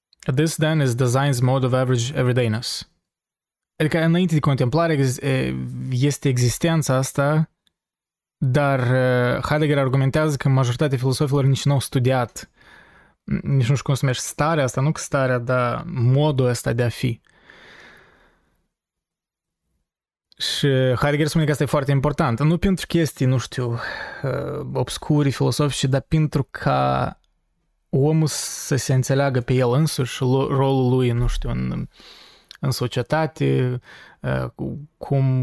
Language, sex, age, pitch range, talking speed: Romanian, male, 20-39, 125-145 Hz, 130 wpm